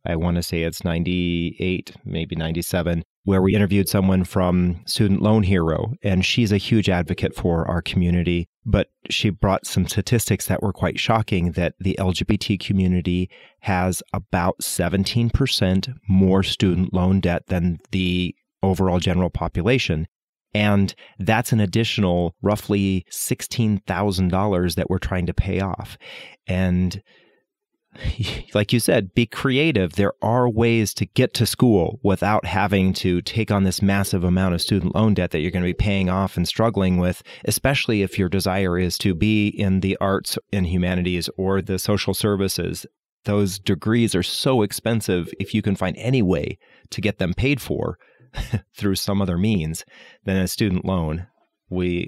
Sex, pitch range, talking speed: male, 90-105 Hz, 160 wpm